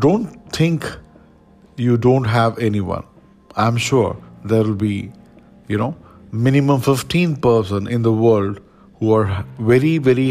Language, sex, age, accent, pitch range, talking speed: English, male, 50-69, Indian, 105-130 Hz, 135 wpm